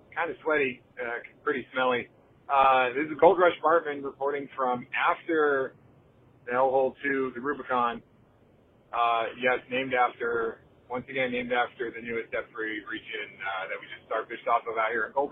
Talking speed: 170 wpm